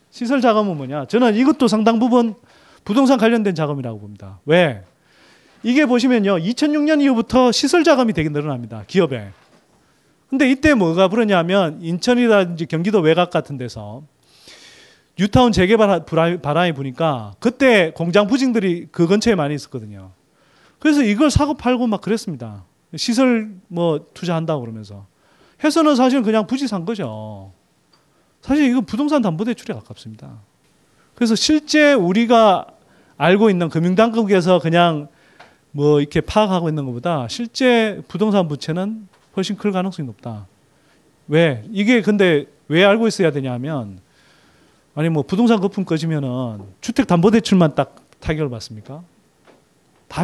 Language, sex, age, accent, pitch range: Korean, male, 30-49, native, 145-230 Hz